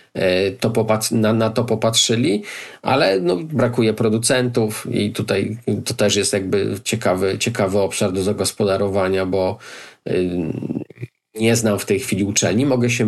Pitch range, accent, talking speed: 100-125 Hz, native, 125 wpm